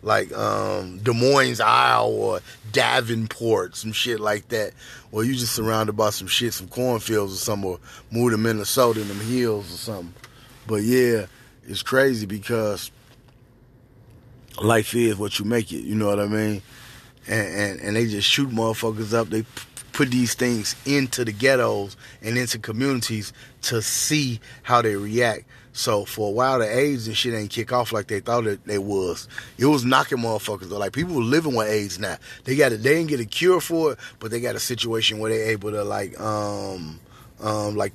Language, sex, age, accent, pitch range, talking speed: English, male, 30-49, American, 105-125 Hz, 195 wpm